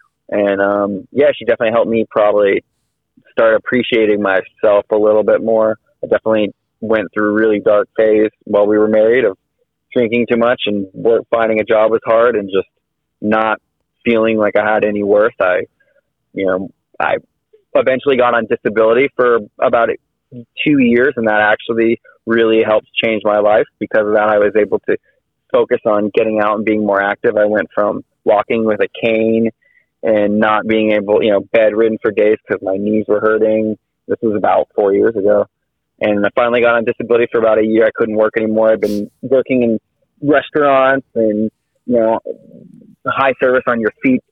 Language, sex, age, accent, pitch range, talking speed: English, male, 30-49, American, 105-120 Hz, 185 wpm